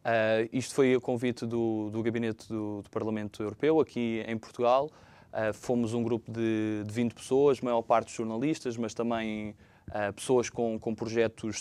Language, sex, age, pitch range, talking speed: Portuguese, male, 20-39, 115-135 Hz, 170 wpm